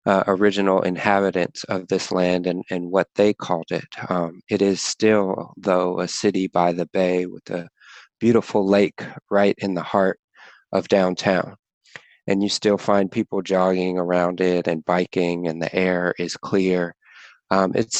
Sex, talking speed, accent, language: male, 165 wpm, American, English